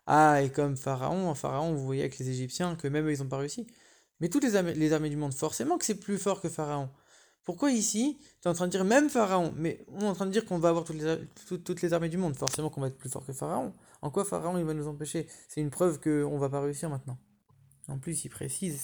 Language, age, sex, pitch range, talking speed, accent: English, 20-39, male, 145-180 Hz, 275 wpm, French